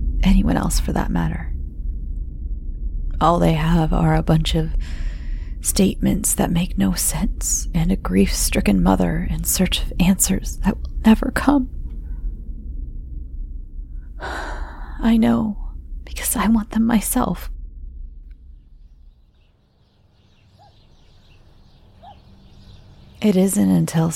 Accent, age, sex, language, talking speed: American, 30-49, female, English, 95 wpm